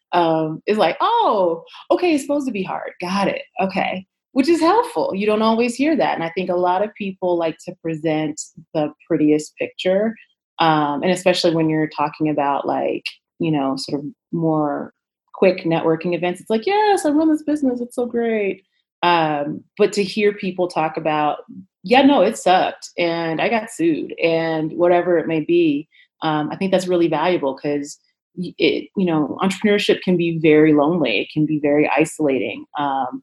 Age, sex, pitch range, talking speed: 30-49, female, 155-210 Hz, 180 wpm